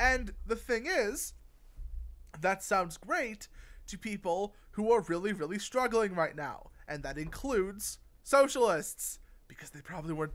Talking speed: 140 wpm